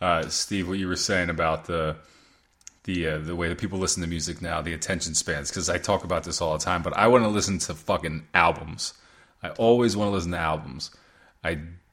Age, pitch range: 20-39, 85-110 Hz